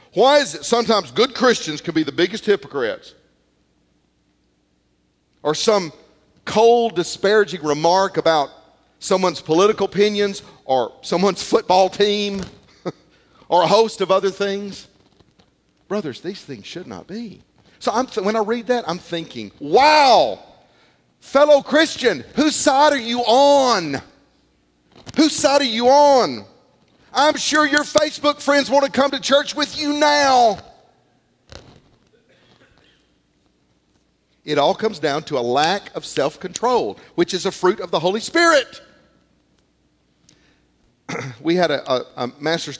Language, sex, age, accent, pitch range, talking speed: English, male, 40-59, American, 150-240 Hz, 130 wpm